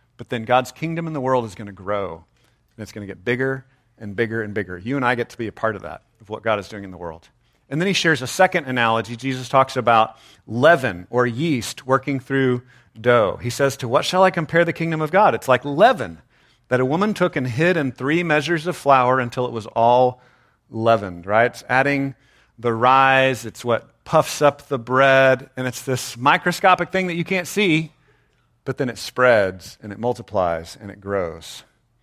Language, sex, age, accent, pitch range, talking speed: English, male, 40-59, American, 115-150 Hz, 210 wpm